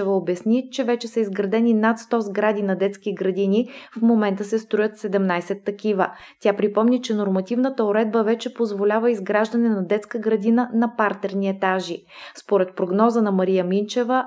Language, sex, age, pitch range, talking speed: Bulgarian, female, 20-39, 195-230 Hz, 150 wpm